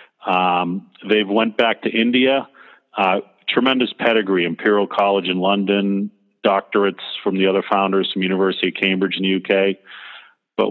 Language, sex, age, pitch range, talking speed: English, male, 40-59, 95-110 Hz, 145 wpm